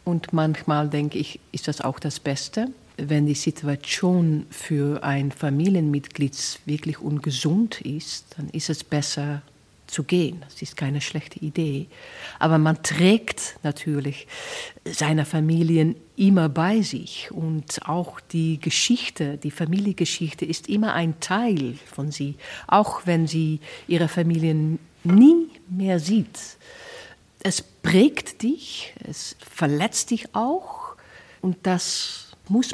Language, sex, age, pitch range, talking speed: German, female, 50-69, 155-195 Hz, 125 wpm